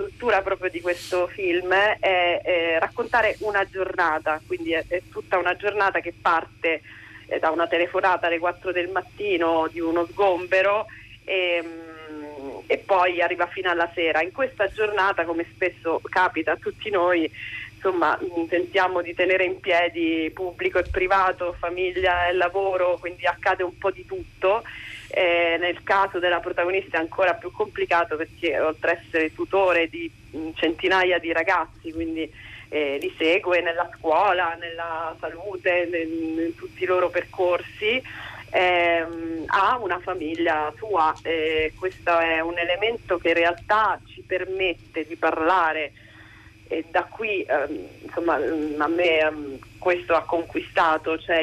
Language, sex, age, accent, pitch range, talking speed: Italian, female, 30-49, native, 165-185 Hz, 140 wpm